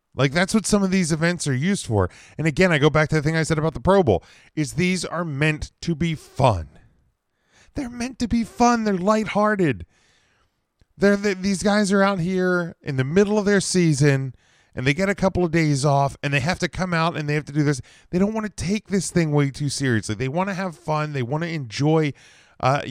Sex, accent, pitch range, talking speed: male, American, 130-175 Hz, 240 wpm